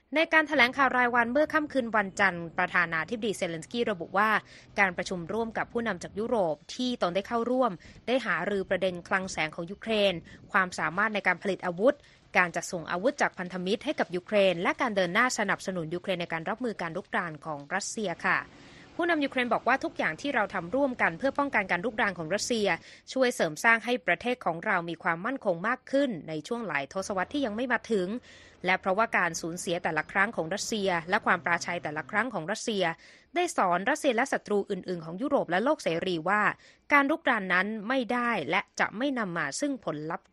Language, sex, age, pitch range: Thai, female, 20-39, 180-240 Hz